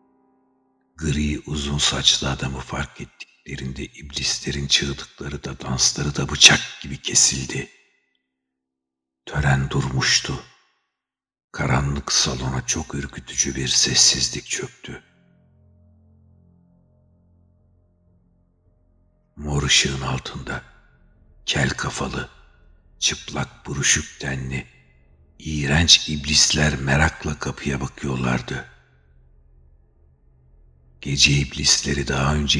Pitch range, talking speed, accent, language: 65-75 Hz, 75 wpm, native, Turkish